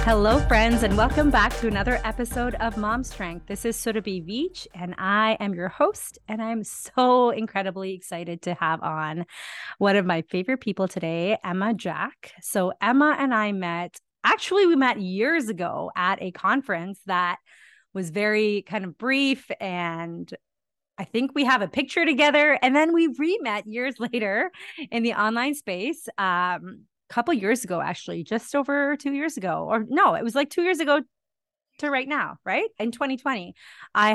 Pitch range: 190-260 Hz